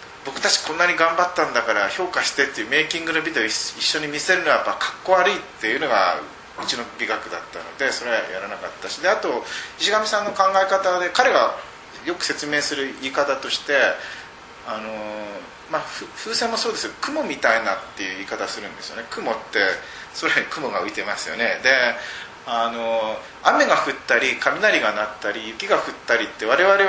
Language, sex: Japanese, male